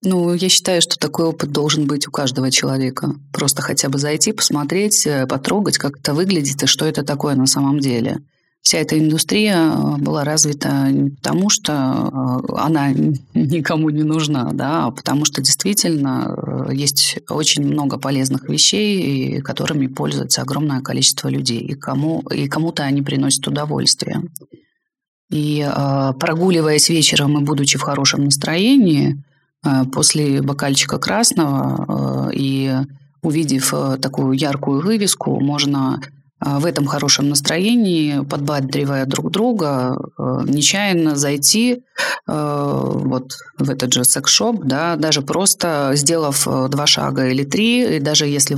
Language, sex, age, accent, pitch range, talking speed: Russian, female, 20-39, native, 140-165 Hz, 130 wpm